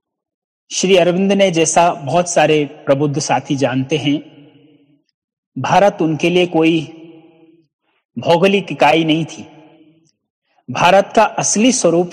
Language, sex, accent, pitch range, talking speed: Hindi, male, native, 150-195 Hz, 110 wpm